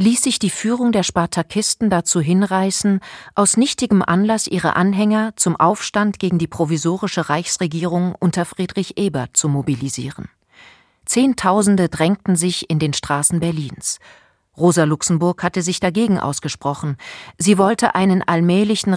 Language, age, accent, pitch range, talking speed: German, 40-59, German, 160-205 Hz, 130 wpm